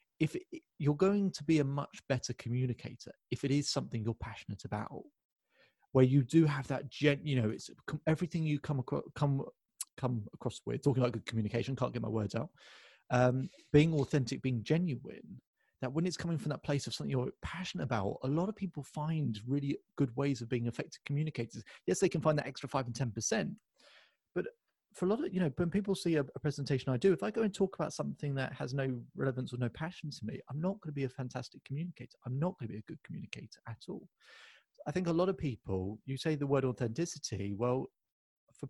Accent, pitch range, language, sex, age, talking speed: British, 125-160 Hz, English, male, 30-49, 225 wpm